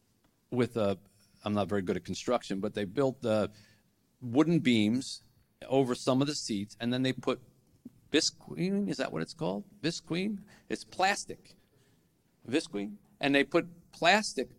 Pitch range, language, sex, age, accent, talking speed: 100-135 Hz, English, male, 50-69, American, 150 wpm